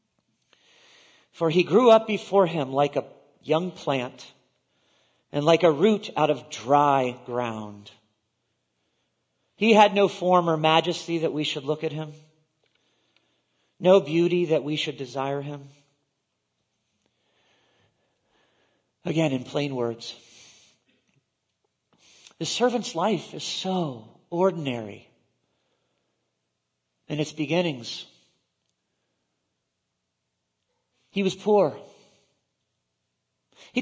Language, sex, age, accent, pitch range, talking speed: English, male, 40-59, American, 125-205 Hz, 95 wpm